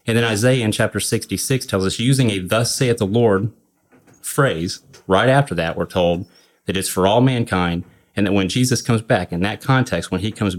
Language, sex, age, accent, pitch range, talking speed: English, male, 30-49, American, 95-120 Hz, 210 wpm